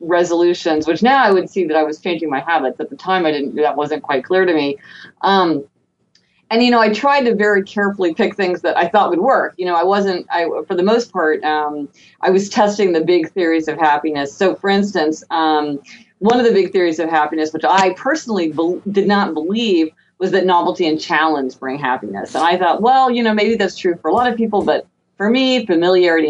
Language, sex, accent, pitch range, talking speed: English, female, American, 155-200 Hz, 230 wpm